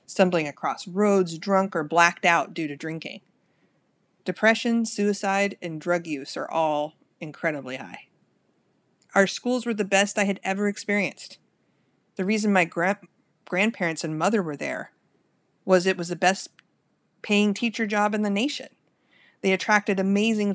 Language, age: English, 30-49